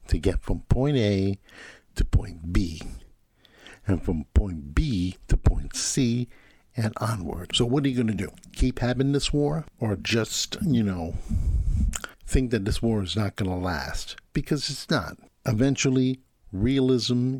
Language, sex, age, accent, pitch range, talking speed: English, male, 60-79, American, 95-130 Hz, 160 wpm